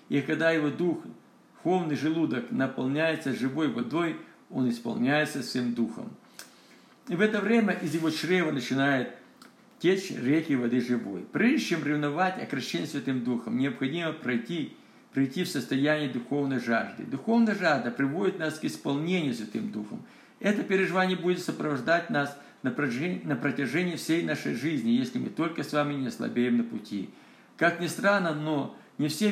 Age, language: 50-69, Russian